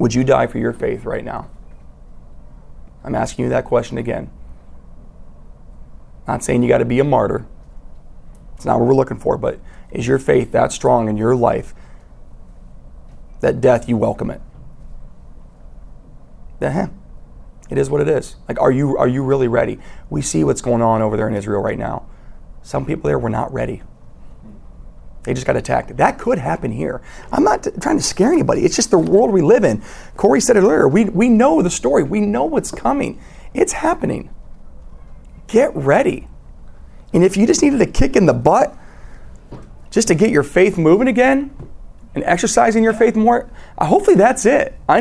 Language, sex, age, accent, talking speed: English, male, 30-49, American, 180 wpm